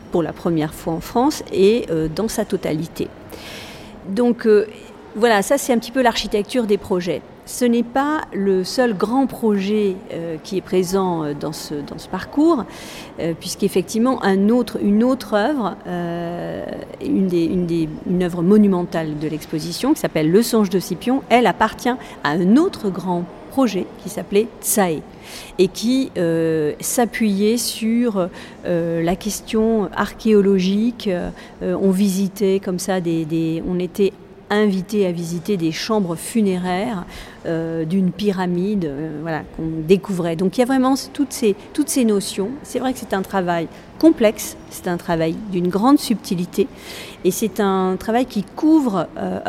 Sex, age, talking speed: female, 40-59, 155 wpm